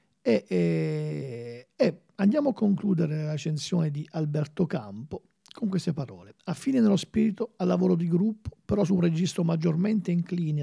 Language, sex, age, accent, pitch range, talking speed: Italian, male, 50-69, native, 160-200 Hz, 160 wpm